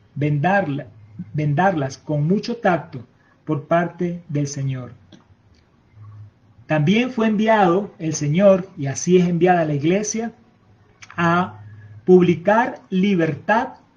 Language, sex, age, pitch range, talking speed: Spanish, male, 40-59, 140-190 Hz, 100 wpm